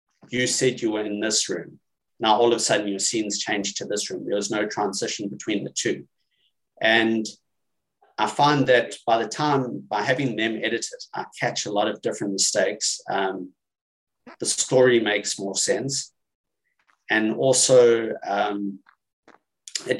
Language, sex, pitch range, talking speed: English, male, 100-125 Hz, 160 wpm